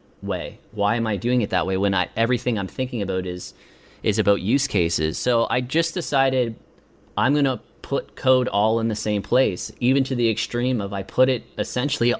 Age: 30-49